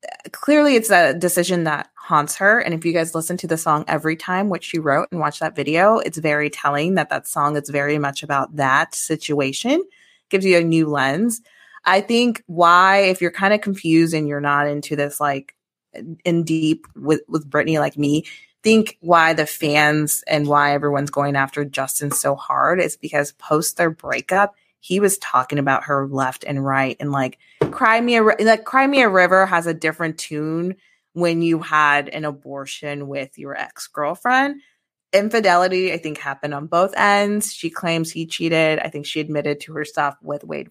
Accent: American